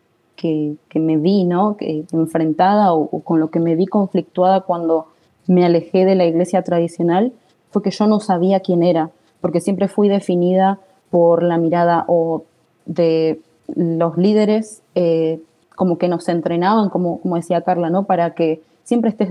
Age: 20-39